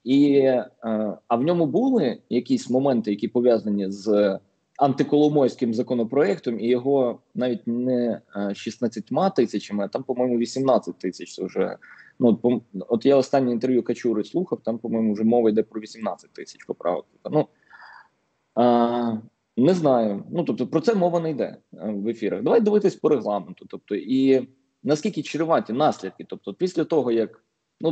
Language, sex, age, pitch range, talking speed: Ukrainian, male, 20-39, 110-150 Hz, 150 wpm